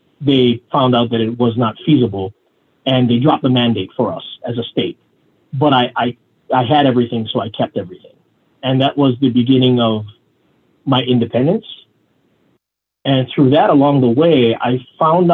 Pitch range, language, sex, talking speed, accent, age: 115-135 Hz, English, male, 170 wpm, American, 30-49